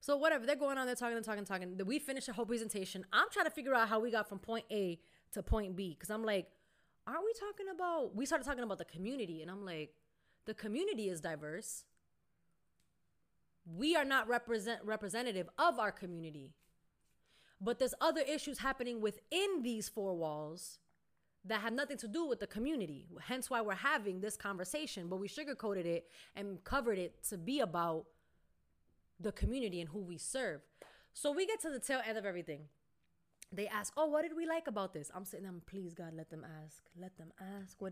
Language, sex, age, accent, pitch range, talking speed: English, female, 20-39, American, 185-265 Hz, 200 wpm